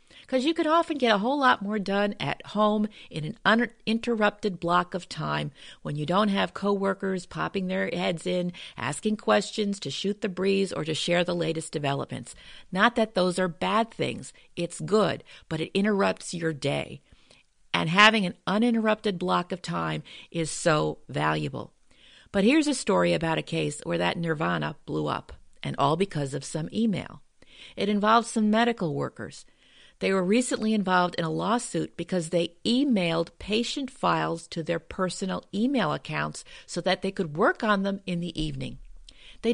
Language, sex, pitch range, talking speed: English, female, 170-225 Hz, 170 wpm